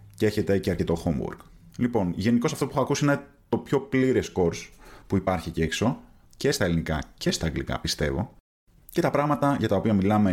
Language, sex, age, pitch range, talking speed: Greek, male, 30-49, 85-125 Hz, 200 wpm